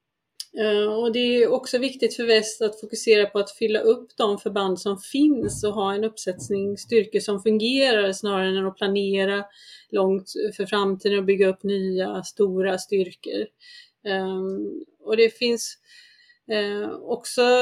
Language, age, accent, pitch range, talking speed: Swedish, 30-49, native, 195-235 Hz, 145 wpm